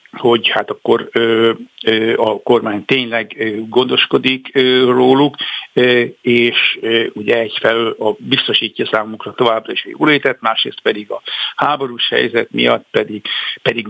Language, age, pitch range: Hungarian, 60-79, 115-130 Hz